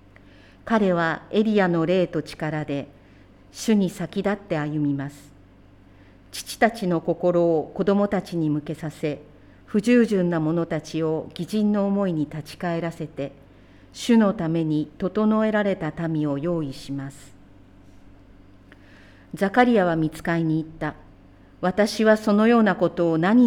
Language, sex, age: Japanese, female, 50-69